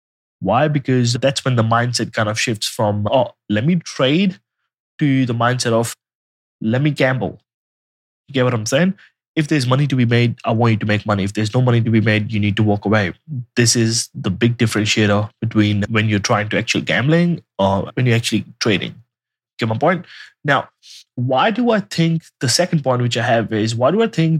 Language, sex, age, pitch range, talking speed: English, male, 20-39, 115-150 Hz, 210 wpm